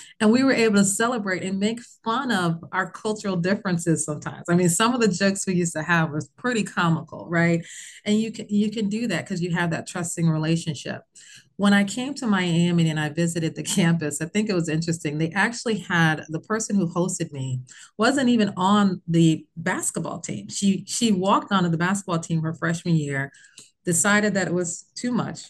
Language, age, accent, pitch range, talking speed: English, 30-49, American, 170-225 Hz, 200 wpm